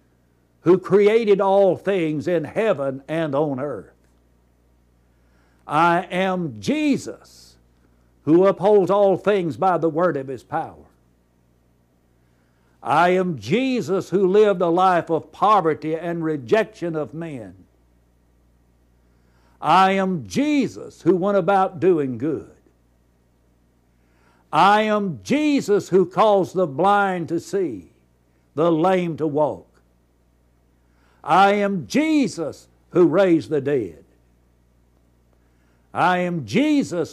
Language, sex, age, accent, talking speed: English, male, 60-79, American, 105 wpm